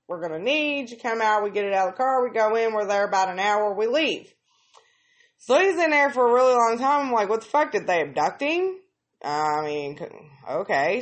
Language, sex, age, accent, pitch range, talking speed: English, female, 20-39, American, 200-300 Hz, 250 wpm